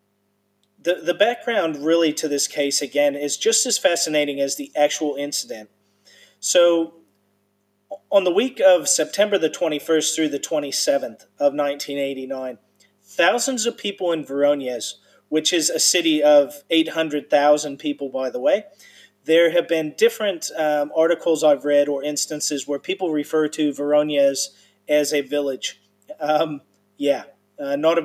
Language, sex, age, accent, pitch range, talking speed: English, male, 40-59, American, 145-165 Hz, 145 wpm